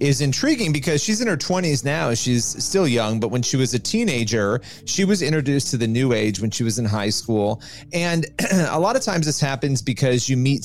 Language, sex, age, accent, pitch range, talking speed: English, male, 30-49, American, 120-150 Hz, 225 wpm